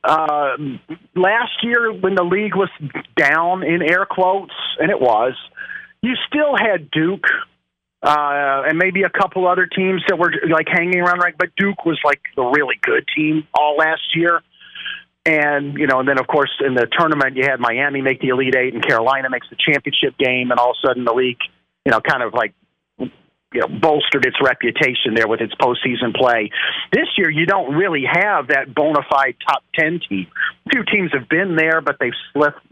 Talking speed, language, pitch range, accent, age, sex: 200 wpm, English, 135-170 Hz, American, 40-59, male